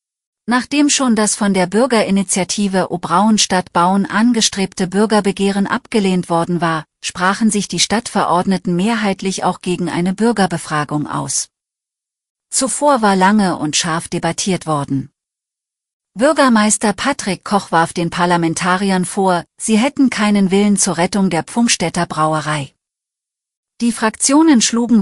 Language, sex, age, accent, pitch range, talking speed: German, female, 40-59, German, 170-220 Hz, 120 wpm